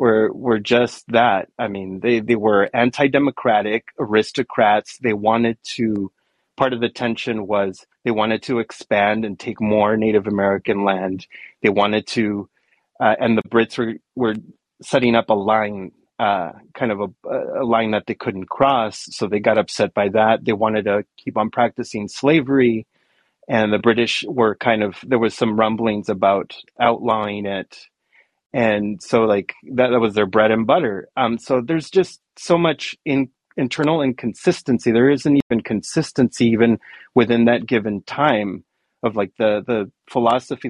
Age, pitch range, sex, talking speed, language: 30-49, 105-125 Hz, male, 165 wpm, English